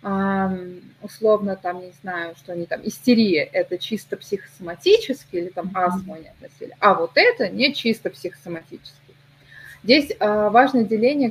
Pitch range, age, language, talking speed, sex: 185-250 Hz, 20-39, Russian, 135 wpm, female